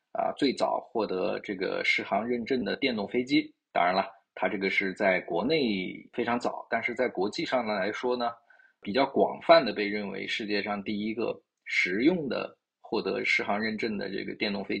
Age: 20-39